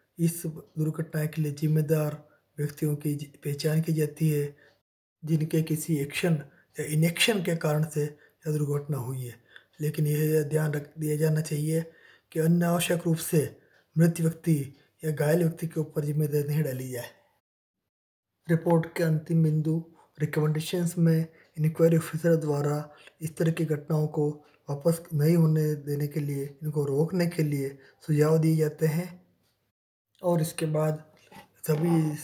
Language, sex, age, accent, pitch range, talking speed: Hindi, male, 20-39, native, 145-160 Hz, 140 wpm